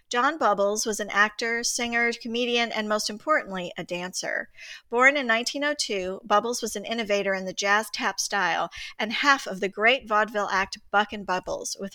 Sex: female